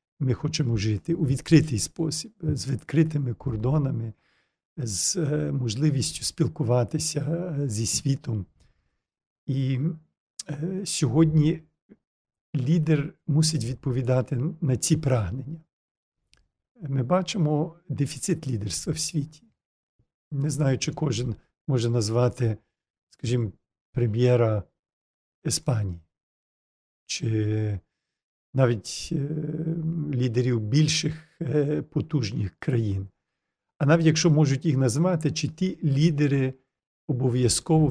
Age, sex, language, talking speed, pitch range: 50-69, male, Ukrainian, 85 wpm, 125-160 Hz